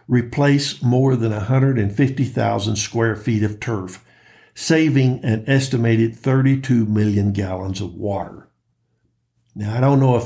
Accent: American